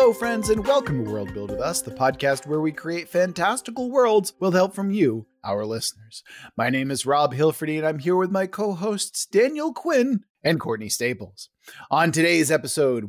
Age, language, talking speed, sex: 30-49, English, 190 wpm, male